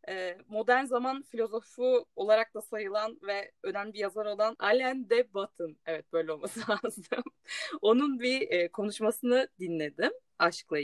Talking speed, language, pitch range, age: 125 wpm, Turkish, 190-265 Hz, 30-49